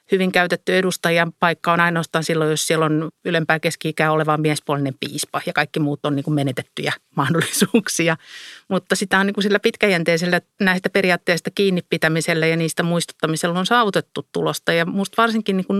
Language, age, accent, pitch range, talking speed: Finnish, 50-69, native, 160-195 Hz, 160 wpm